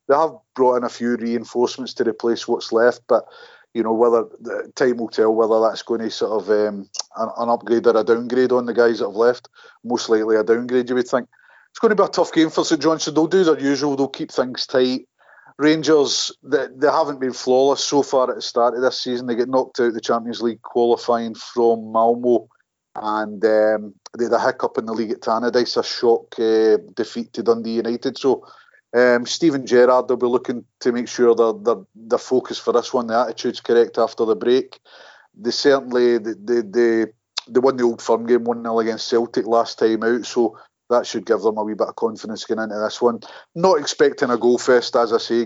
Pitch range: 115-130 Hz